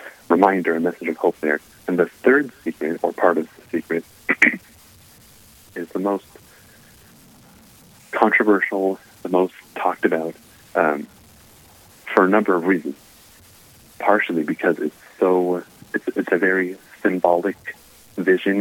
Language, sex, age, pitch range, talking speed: English, male, 30-49, 80-95 Hz, 125 wpm